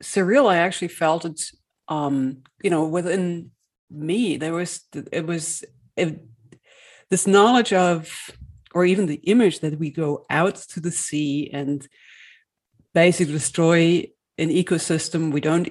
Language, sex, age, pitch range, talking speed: English, female, 40-59, 155-180 Hz, 140 wpm